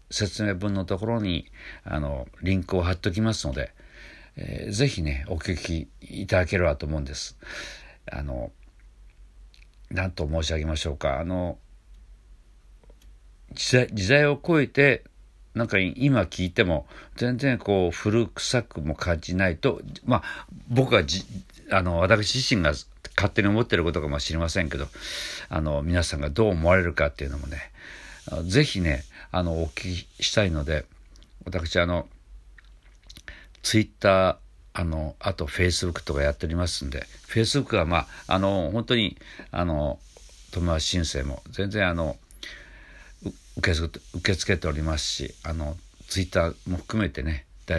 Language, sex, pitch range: Japanese, male, 75-100 Hz